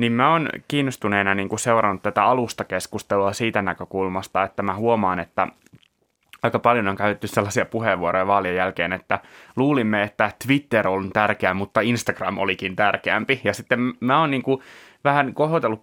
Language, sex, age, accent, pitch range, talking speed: Finnish, male, 20-39, native, 100-115 Hz, 150 wpm